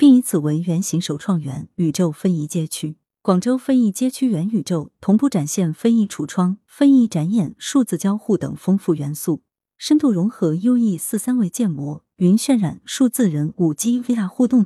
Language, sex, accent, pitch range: Chinese, female, native, 160-230 Hz